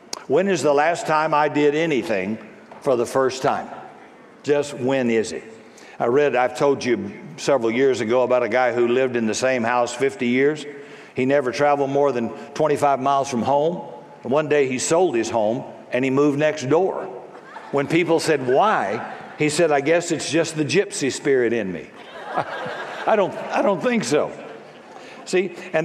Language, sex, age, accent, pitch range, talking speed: English, male, 60-79, American, 145-185 Hz, 180 wpm